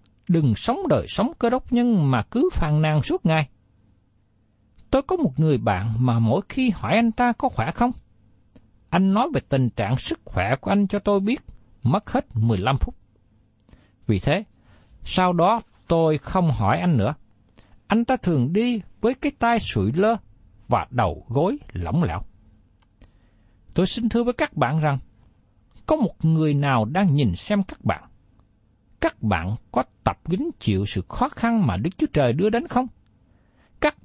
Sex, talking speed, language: male, 175 wpm, Vietnamese